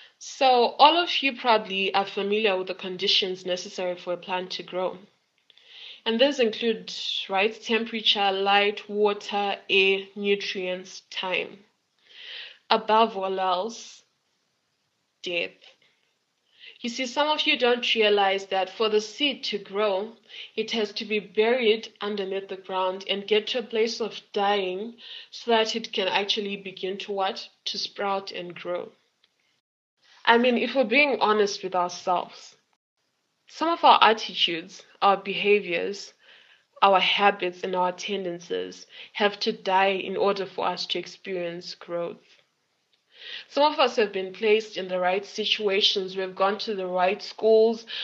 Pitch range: 185-220 Hz